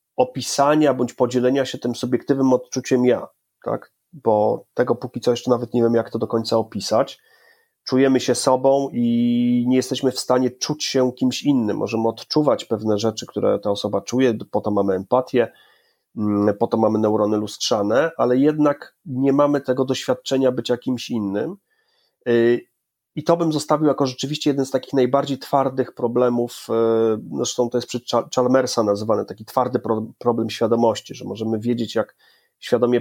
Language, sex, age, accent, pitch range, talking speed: Polish, male, 30-49, native, 115-135 Hz, 160 wpm